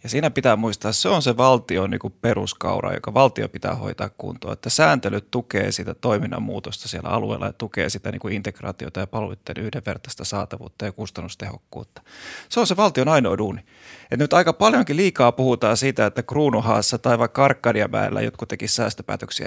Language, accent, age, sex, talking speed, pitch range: Finnish, native, 30-49, male, 170 wpm, 110-135 Hz